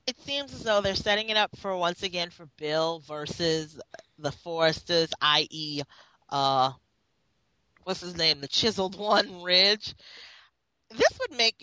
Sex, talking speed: female, 145 wpm